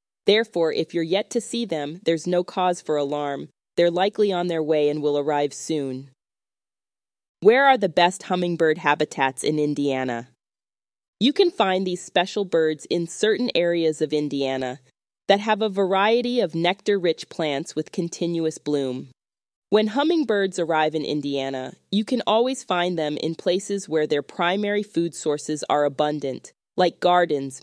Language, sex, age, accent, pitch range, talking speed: English, female, 20-39, American, 140-190 Hz, 155 wpm